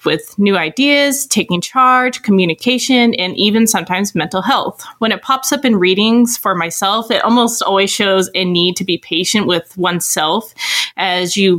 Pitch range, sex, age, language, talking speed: 180-230 Hz, female, 20-39, English, 165 wpm